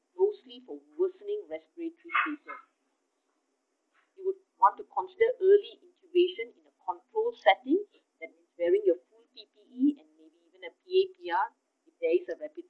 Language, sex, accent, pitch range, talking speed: English, female, Indian, 260-360 Hz, 150 wpm